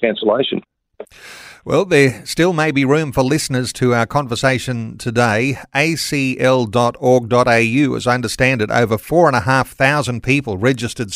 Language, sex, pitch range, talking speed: English, male, 120-145 Hz, 120 wpm